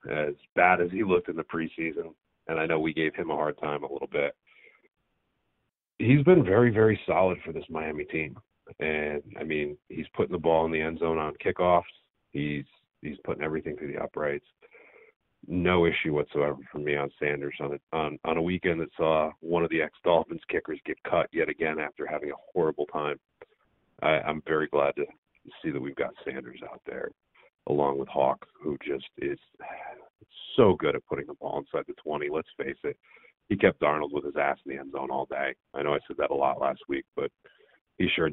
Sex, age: male, 40-59